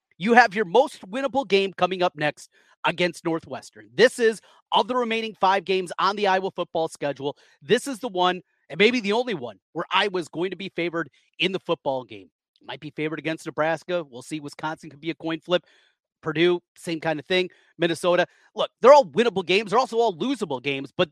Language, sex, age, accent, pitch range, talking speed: English, male, 30-49, American, 155-210 Hz, 205 wpm